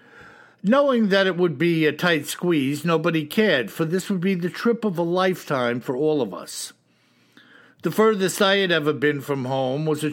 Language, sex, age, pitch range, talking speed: English, male, 60-79, 145-190 Hz, 195 wpm